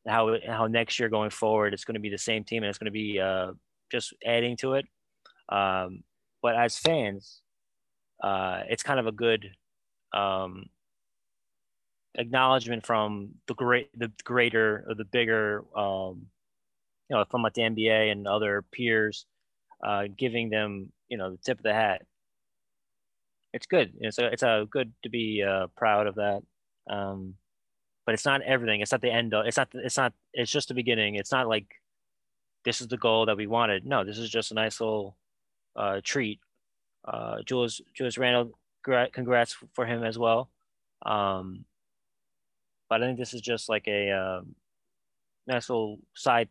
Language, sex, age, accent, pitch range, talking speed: English, male, 20-39, American, 105-120 Hz, 175 wpm